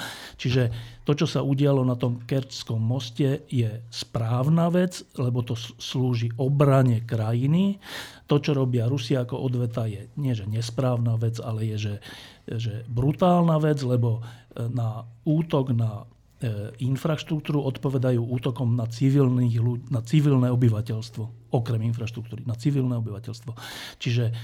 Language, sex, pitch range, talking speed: Slovak, male, 115-140 Hz, 130 wpm